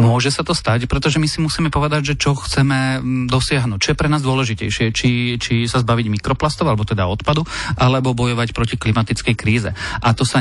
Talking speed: 195 wpm